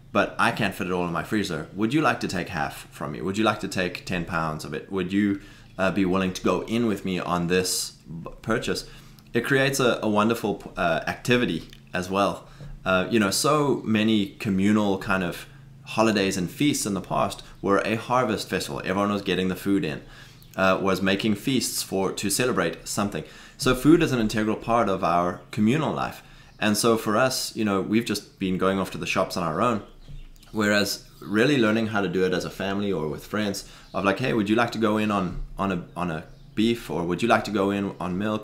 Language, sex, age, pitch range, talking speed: English, male, 20-39, 95-115 Hz, 225 wpm